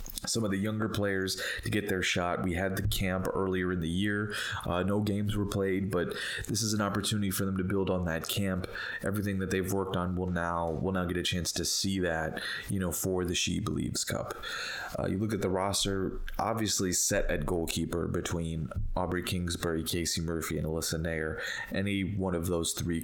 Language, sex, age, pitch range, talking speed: English, male, 20-39, 90-100 Hz, 205 wpm